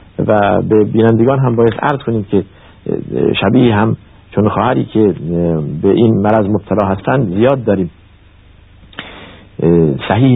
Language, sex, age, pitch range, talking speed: Persian, male, 50-69, 95-115 Hz, 120 wpm